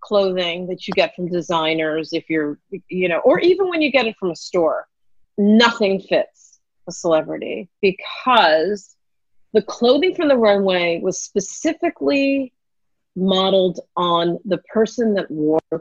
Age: 40-59